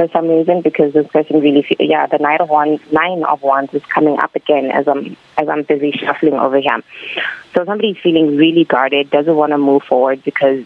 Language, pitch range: English, 135-155 Hz